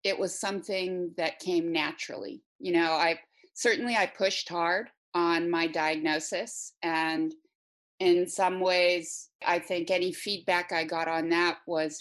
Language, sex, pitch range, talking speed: English, female, 165-195 Hz, 145 wpm